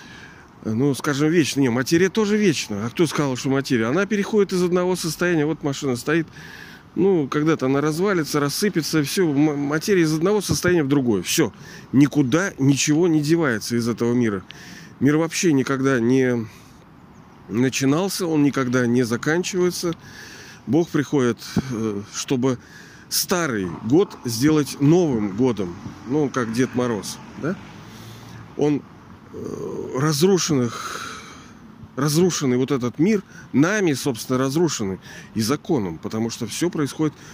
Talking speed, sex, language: 125 wpm, male, Russian